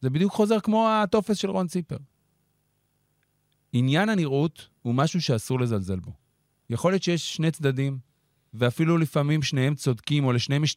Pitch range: 120-150 Hz